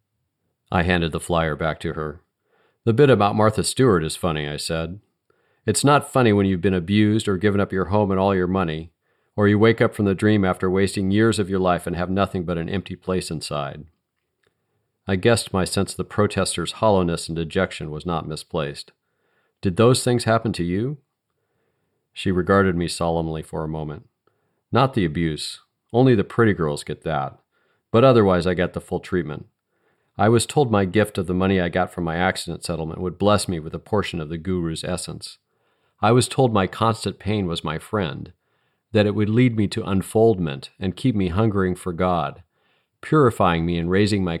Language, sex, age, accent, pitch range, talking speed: English, male, 40-59, American, 85-105 Hz, 195 wpm